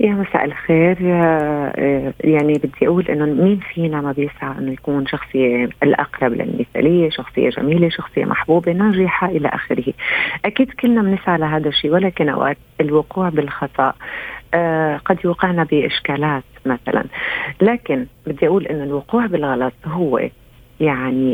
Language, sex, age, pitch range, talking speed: Arabic, female, 40-59, 145-185 Hz, 130 wpm